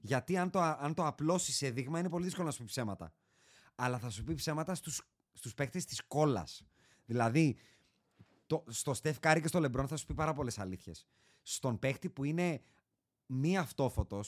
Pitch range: 120-160 Hz